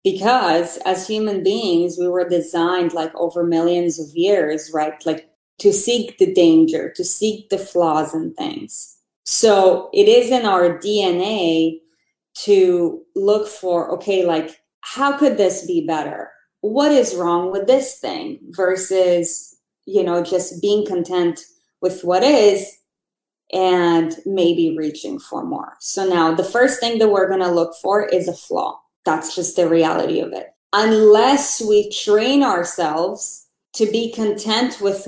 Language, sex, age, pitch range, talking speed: English, female, 20-39, 175-225 Hz, 150 wpm